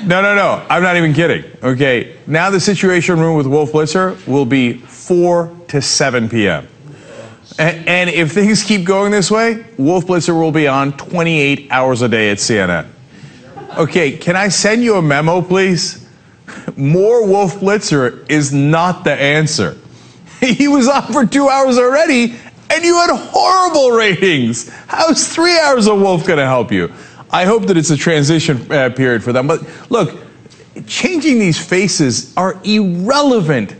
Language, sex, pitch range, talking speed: English, male, 165-255 Hz, 160 wpm